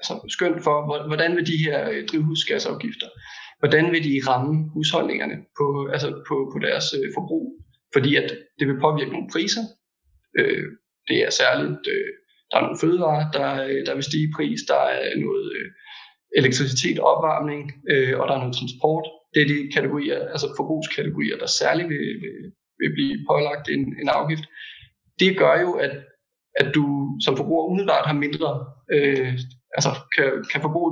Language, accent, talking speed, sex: Danish, native, 170 wpm, male